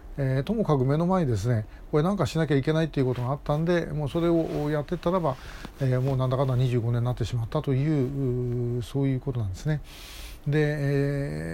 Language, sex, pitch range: Japanese, male, 130-170 Hz